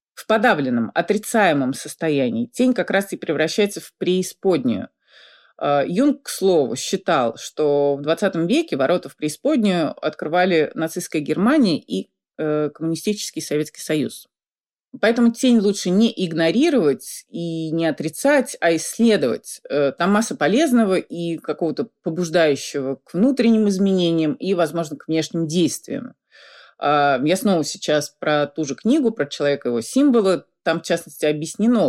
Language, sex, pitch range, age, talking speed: Russian, female, 150-225 Hz, 30-49, 130 wpm